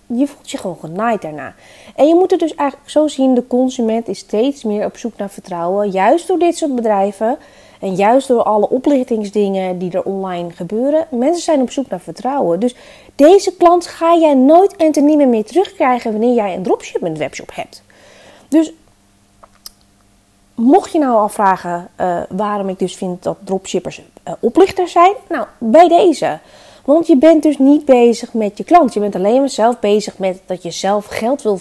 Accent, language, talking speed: Dutch, Dutch, 190 wpm